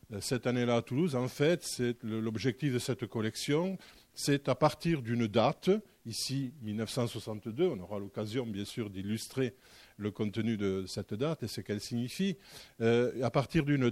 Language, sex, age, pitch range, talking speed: French, male, 50-69, 115-155 Hz, 160 wpm